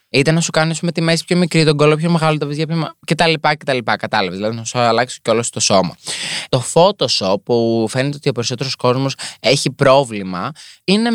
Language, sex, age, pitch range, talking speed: Greek, male, 20-39, 115-150 Hz, 220 wpm